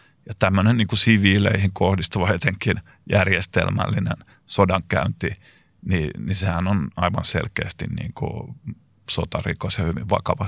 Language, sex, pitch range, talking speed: Finnish, male, 95-110 Hz, 115 wpm